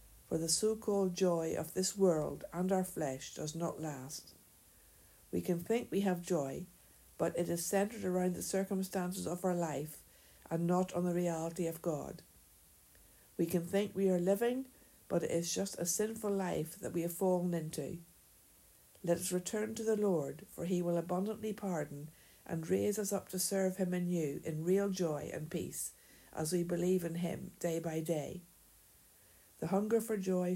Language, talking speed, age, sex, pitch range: English, 175 wpm, 60-79, female, 155-190 Hz